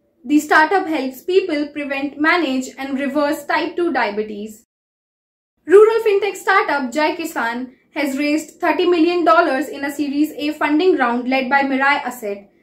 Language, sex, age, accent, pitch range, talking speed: English, female, 20-39, Indian, 275-335 Hz, 145 wpm